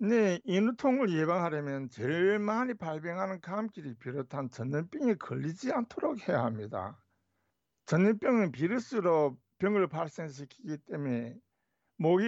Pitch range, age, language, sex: 130-205 Hz, 60-79, Korean, male